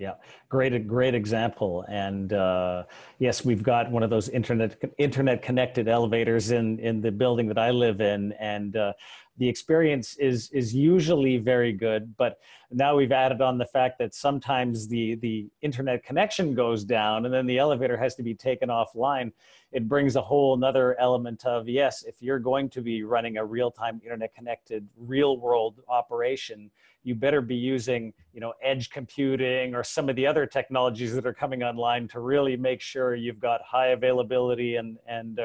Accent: American